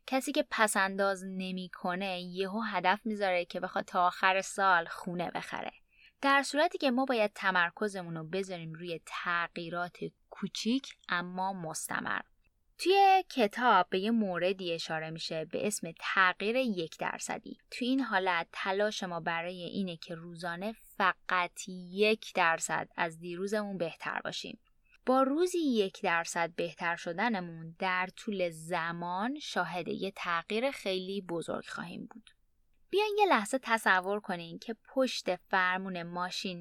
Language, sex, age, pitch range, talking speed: Persian, female, 10-29, 170-225 Hz, 130 wpm